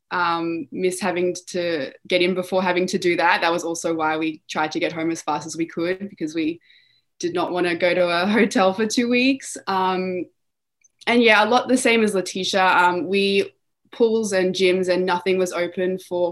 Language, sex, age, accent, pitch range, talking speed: English, female, 20-39, Australian, 170-200 Hz, 205 wpm